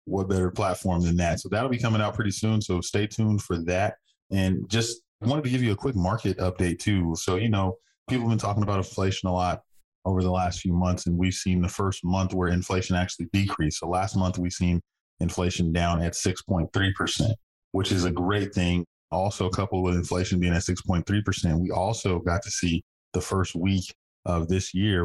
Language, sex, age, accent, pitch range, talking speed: English, male, 20-39, American, 85-95 Hz, 205 wpm